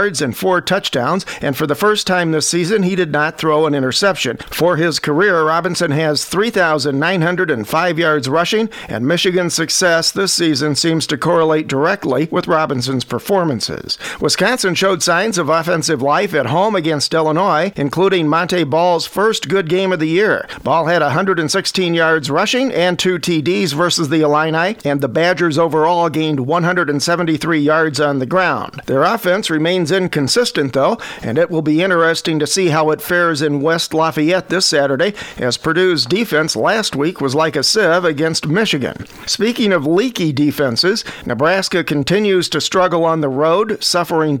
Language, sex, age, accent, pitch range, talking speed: English, male, 50-69, American, 150-185 Hz, 160 wpm